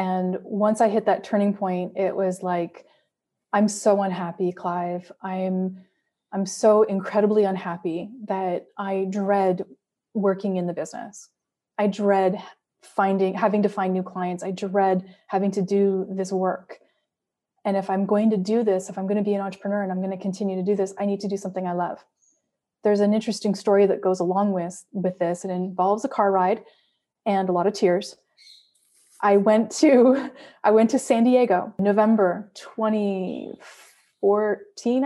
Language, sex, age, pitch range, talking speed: English, female, 20-39, 190-225 Hz, 170 wpm